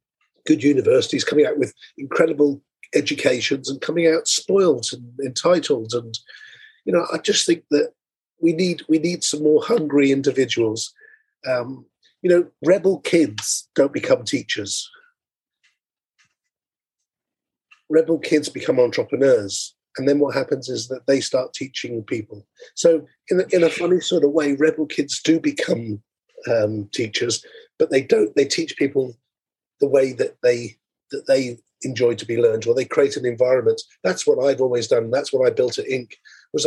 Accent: British